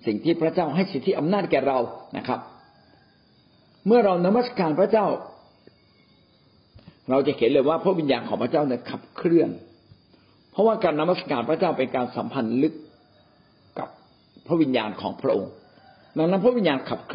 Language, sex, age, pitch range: Thai, male, 60-79, 130-205 Hz